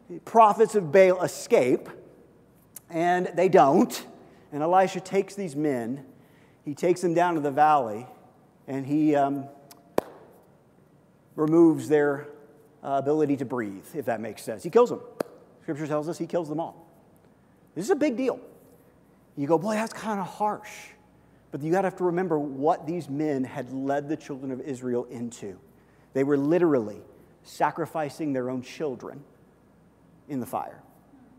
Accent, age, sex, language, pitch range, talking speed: American, 40-59, male, English, 140-175 Hz, 155 wpm